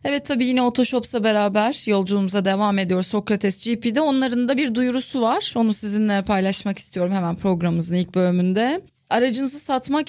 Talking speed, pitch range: 150 wpm, 205-265 Hz